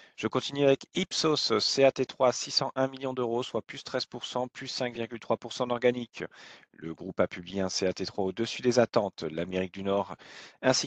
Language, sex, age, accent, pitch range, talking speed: French, male, 40-59, French, 110-135 Hz, 155 wpm